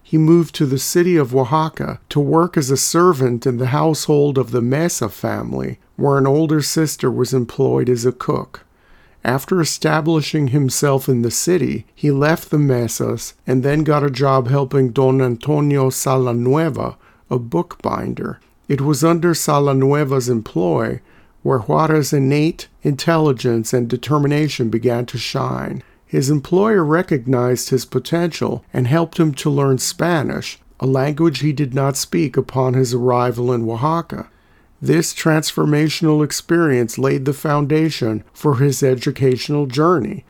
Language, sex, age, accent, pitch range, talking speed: English, male, 50-69, American, 130-155 Hz, 140 wpm